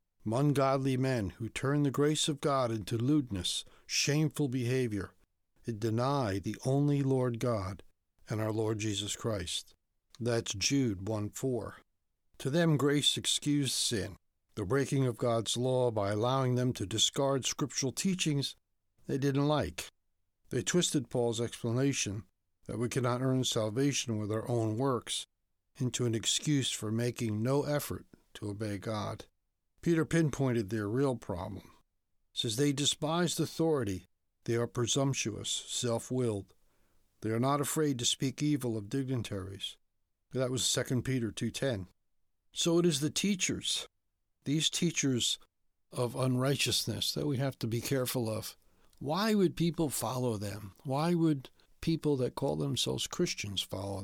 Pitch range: 105-140 Hz